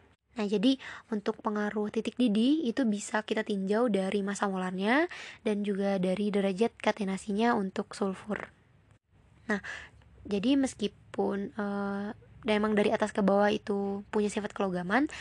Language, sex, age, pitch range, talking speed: Indonesian, female, 20-39, 205-235 Hz, 130 wpm